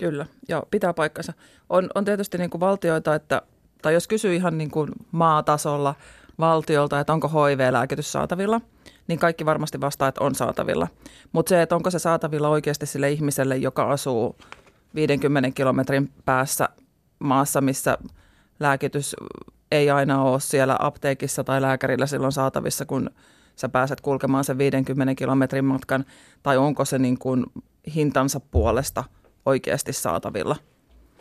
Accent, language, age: native, Finnish, 30-49